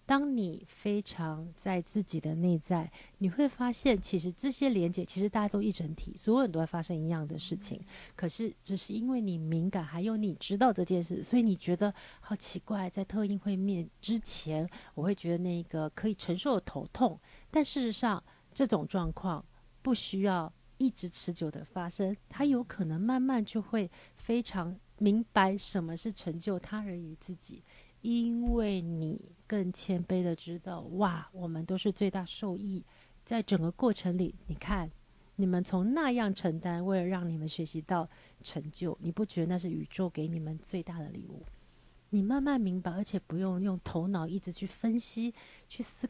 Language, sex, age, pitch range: Chinese, female, 40-59, 170-215 Hz